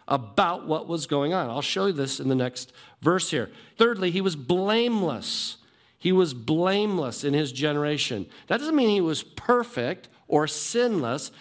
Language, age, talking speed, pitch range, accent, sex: English, 50-69, 170 wpm, 135-180 Hz, American, male